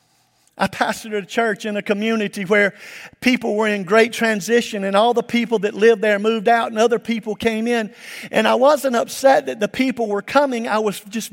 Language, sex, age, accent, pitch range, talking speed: English, male, 50-69, American, 205-245 Hz, 205 wpm